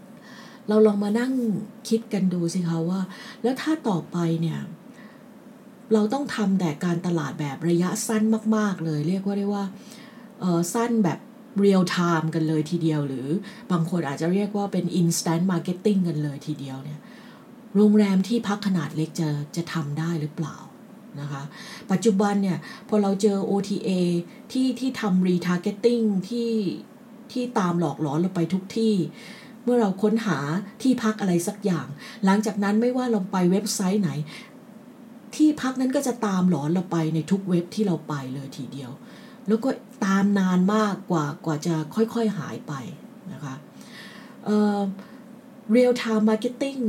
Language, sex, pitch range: English, female, 170-225 Hz